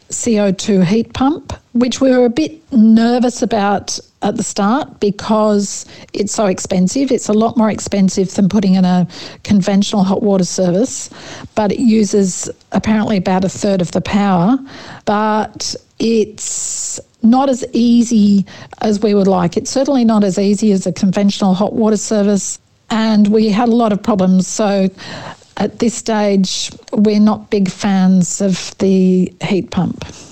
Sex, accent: female, Australian